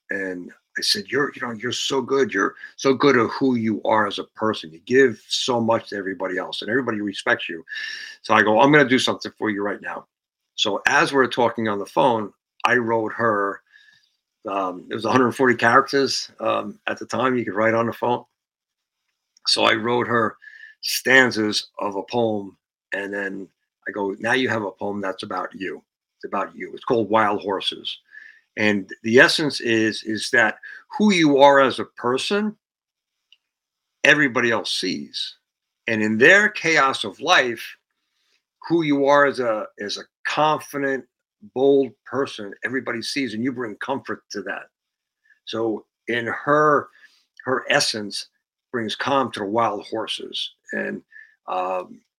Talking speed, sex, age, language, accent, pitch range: 165 wpm, male, 50-69, English, American, 110-140 Hz